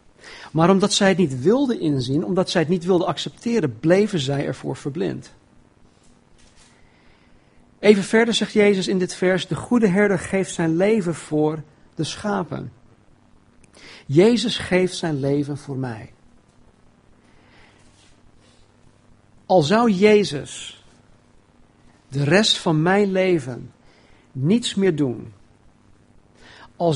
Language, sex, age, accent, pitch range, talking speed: Dutch, male, 60-79, Dutch, 125-185 Hz, 115 wpm